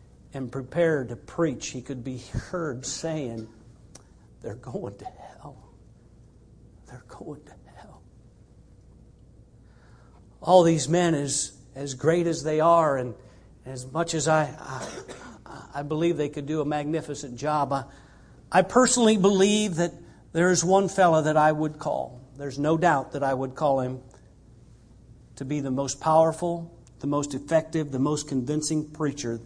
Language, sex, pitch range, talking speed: English, male, 125-160 Hz, 150 wpm